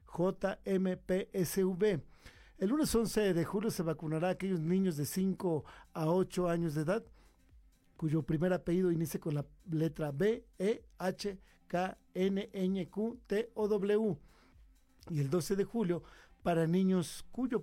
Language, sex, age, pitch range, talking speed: Spanish, male, 50-69, 160-195 Hz, 150 wpm